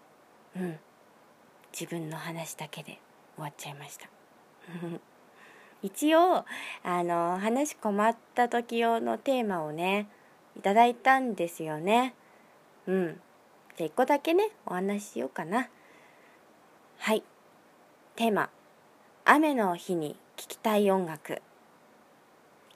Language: Japanese